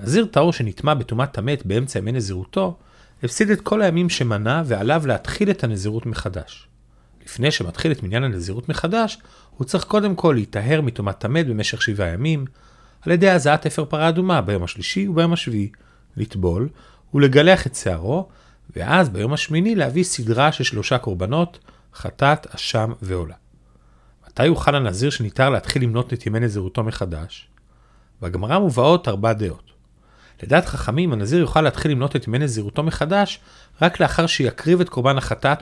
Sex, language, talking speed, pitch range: male, Hebrew, 145 wpm, 110-160 Hz